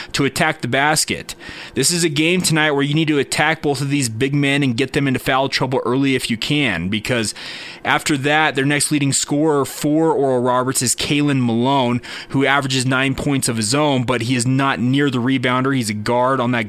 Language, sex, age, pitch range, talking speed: English, male, 30-49, 130-155 Hz, 220 wpm